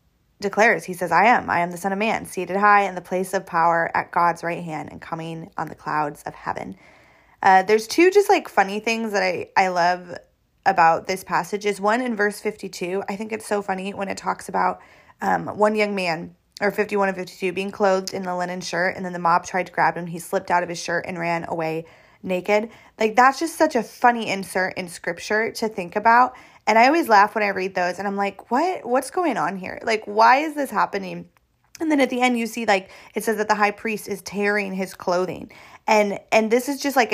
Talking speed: 235 wpm